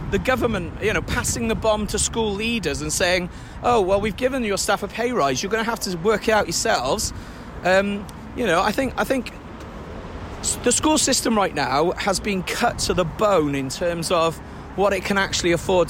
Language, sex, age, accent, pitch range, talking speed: English, male, 40-59, British, 165-215 Hz, 210 wpm